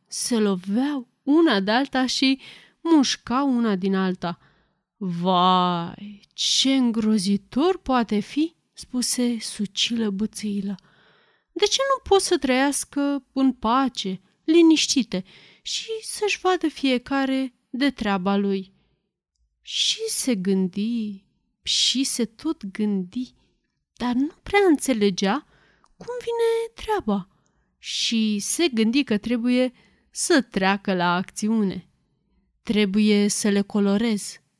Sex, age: female, 30-49